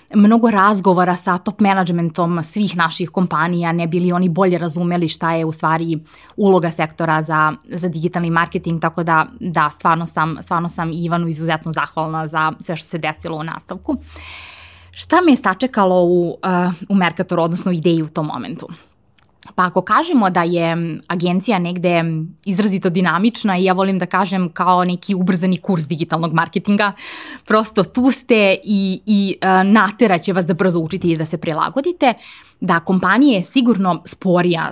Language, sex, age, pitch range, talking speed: English, female, 20-39, 170-220 Hz, 155 wpm